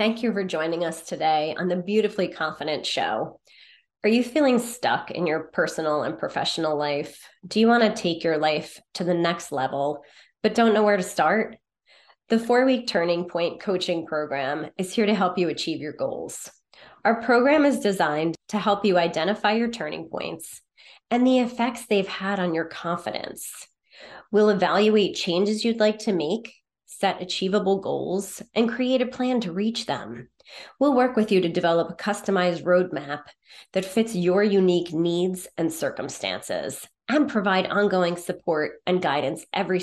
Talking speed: 165 wpm